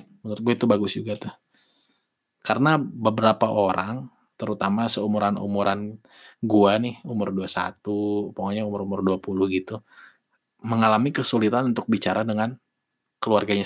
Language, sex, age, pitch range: Indonesian, male, 20-39, 100-120 Hz